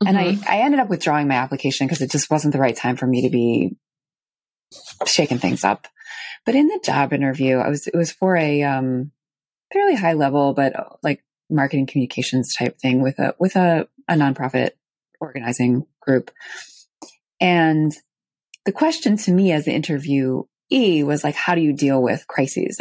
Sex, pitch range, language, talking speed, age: female, 140-185 Hz, English, 180 wpm, 20-39